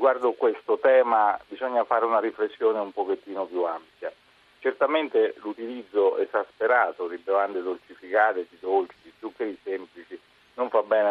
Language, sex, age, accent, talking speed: Italian, male, 40-59, native, 135 wpm